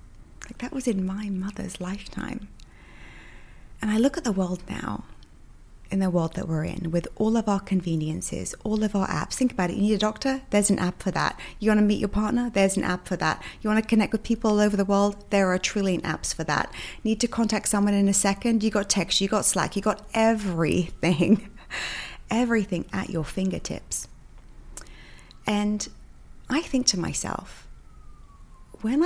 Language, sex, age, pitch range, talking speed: English, female, 30-49, 180-230 Hz, 195 wpm